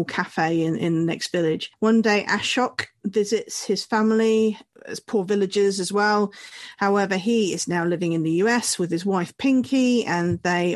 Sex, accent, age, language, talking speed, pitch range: female, British, 40-59, English, 175 wpm, 175-215 Hz